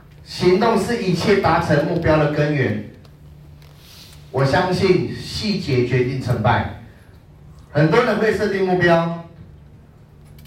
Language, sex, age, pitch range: Chinese, male, 30-49, 110-155 Hz